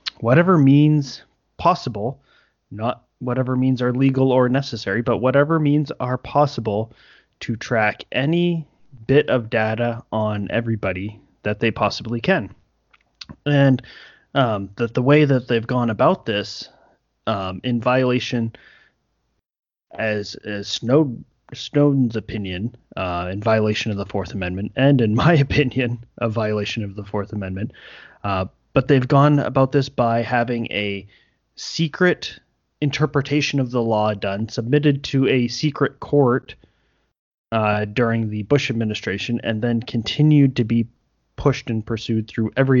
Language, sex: English, male